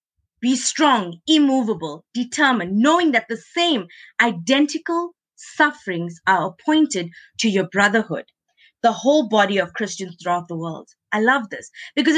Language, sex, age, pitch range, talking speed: English, female, 20-39, 195-280 Hz, 135 wpm